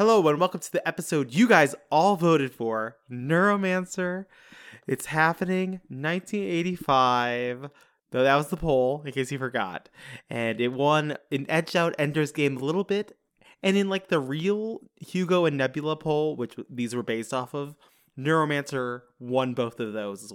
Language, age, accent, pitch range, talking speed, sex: English, 20-39, American, 120-165 Hz, 165 wpm, male